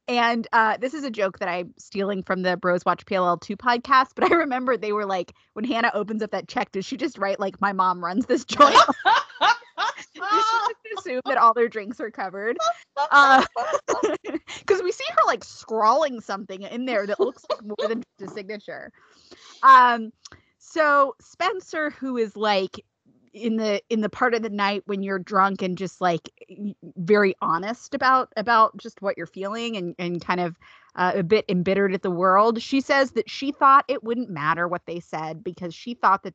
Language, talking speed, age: English, 200 wpm, 20-39